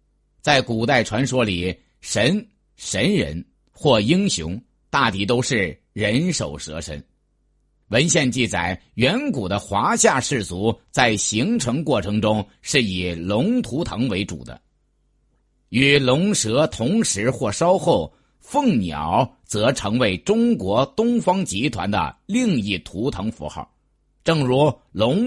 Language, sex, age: Chinese, male, 50-69